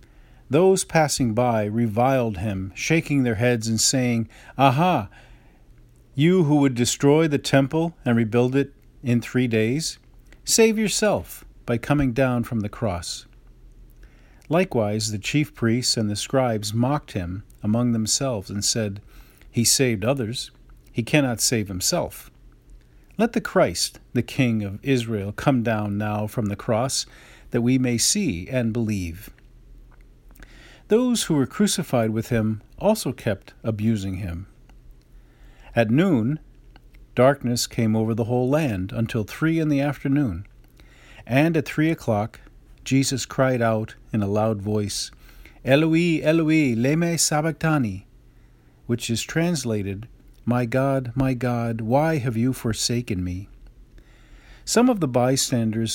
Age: 40-59